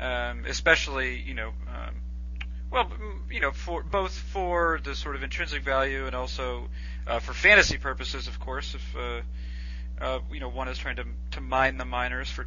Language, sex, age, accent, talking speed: English, male, 40-59, American, 185 wpm